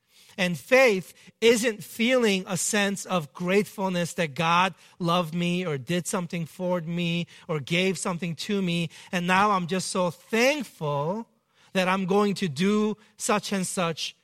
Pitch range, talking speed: 170-210 Hz, 150 wpm